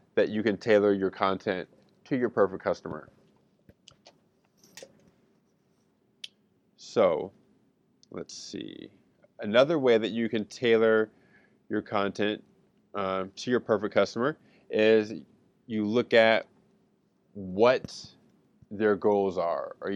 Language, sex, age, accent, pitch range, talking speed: English, male, 20-39, American, 100-140 Hz, 105 wpm